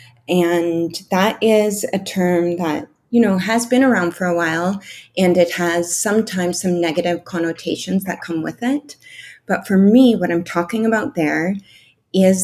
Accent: American